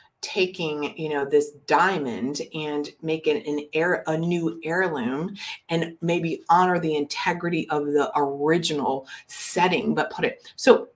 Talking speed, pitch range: 140 wpm, 160-230 Hz